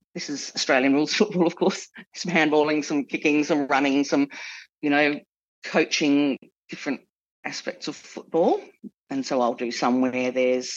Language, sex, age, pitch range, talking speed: English, female, 30-49, 140-215 Hz, 155 wpm